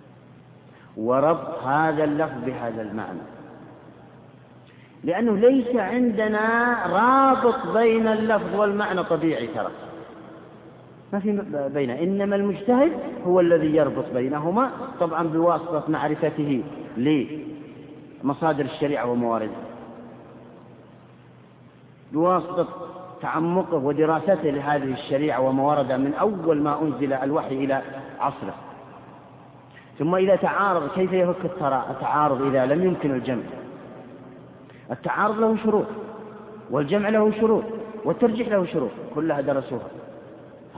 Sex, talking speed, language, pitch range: male, 95 wpm, Arabic, 150-225 Hz